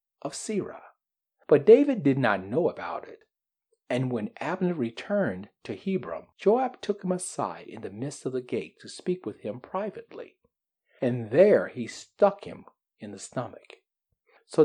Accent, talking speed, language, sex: American, 160 wpm, English, male